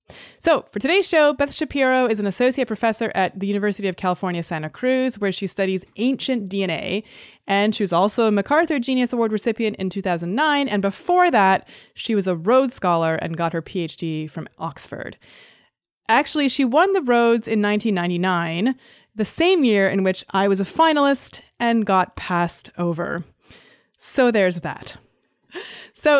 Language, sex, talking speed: English, female, 165 wpm